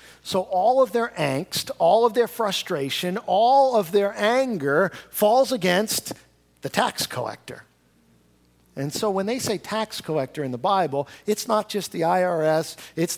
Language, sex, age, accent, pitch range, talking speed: English, male, 50-69, American, 145-210 Hz, 155 wpm